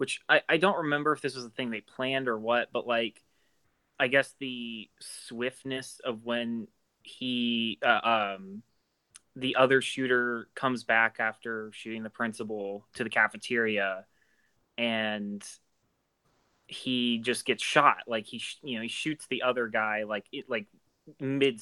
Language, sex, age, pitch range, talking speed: English, male, 20-39, 110-125 Hz, 155 wpm